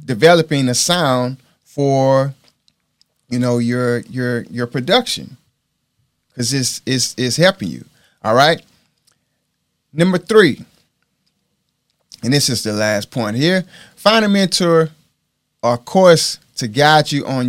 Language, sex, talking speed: English, male, 125 wpm